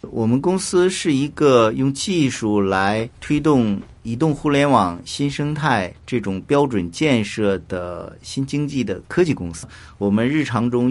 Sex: male